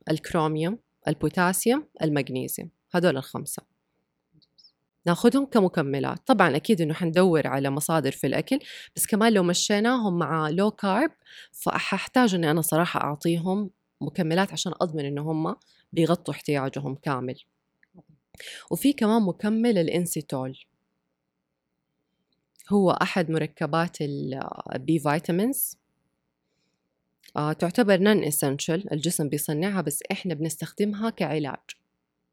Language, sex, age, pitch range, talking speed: Arabic, female, 20-39, 145-190 Hz, 100 wpm